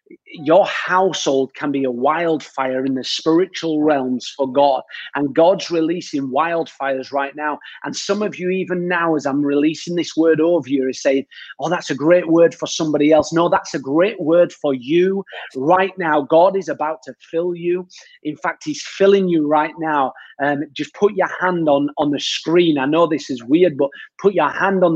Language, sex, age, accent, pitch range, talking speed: English, male, 30-49, British, 155-200 Hz, 200 wpm